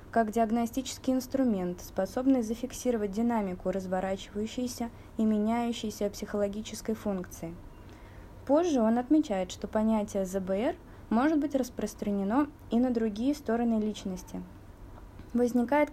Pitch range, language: 200-250 Hz, Russian